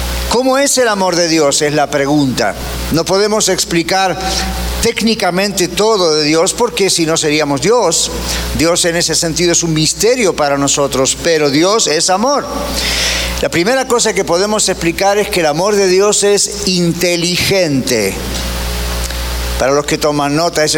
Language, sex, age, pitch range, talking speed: Spanish, male, 50-69, 145-195 Hz, 155 wpm